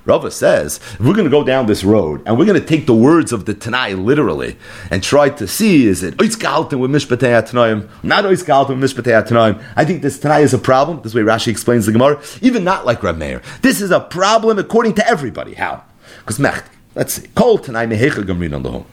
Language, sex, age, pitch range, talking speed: English, male, 40-59, 110-150 Hz, 200 wpm